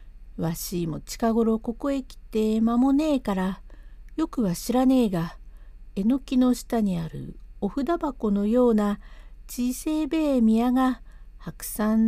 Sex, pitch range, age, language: female, 175-255 Hz, 60-79, Japanese